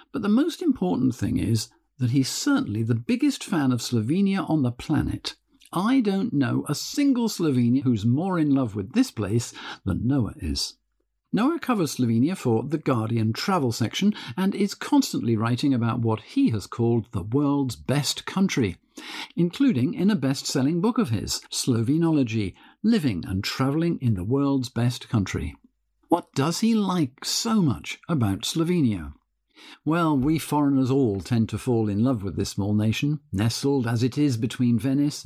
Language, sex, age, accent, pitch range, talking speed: English, male, 50-69, British, 115-175 Hz, 165 wpm